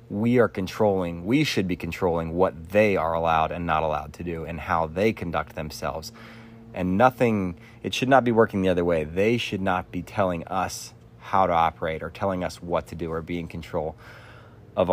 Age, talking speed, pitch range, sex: 30-49, 205 wpm, 85-115 Hz, male